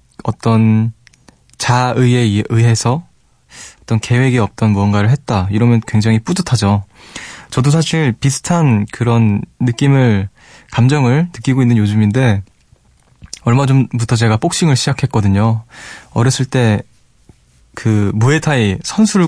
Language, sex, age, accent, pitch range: Korean, male, 20-39, native, 110-140 Hz